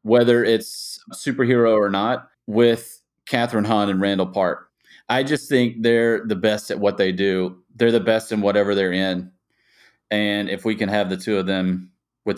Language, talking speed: English, 185 wpm